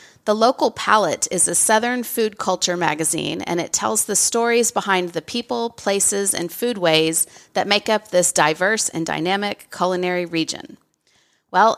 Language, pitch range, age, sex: English, 175-215 Hz, 40-59, female